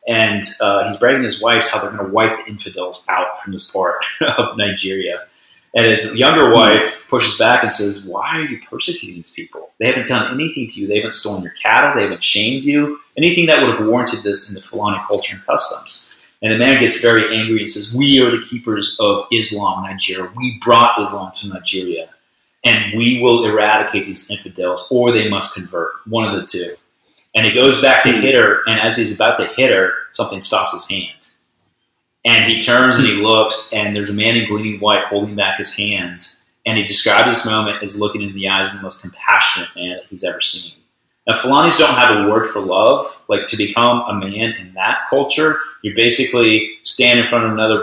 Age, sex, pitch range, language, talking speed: 30-49, male, 100-120 Hz, English, 215 wpm